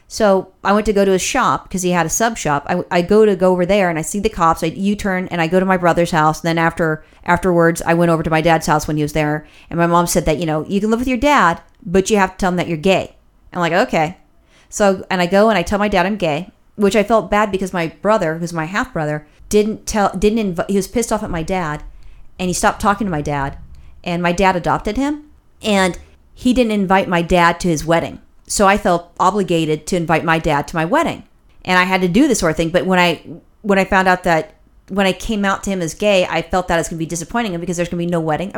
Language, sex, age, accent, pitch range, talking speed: English, female, 40-59, American, 170-210 Hz, 285 wpm